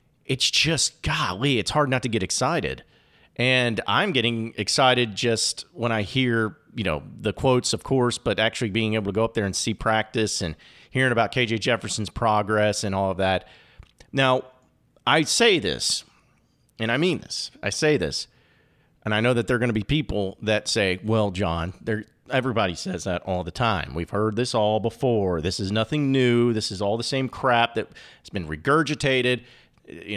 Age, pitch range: 40-59, 105-135 Hz